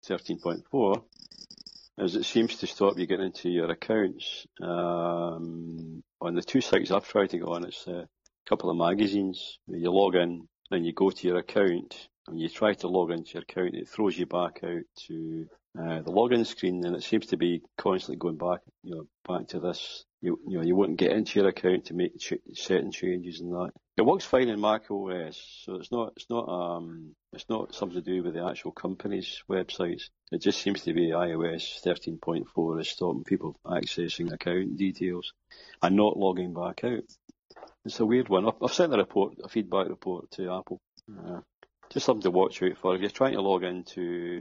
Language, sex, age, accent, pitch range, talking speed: English, male, 40-59, British, 85-100 Hz, 205 wpm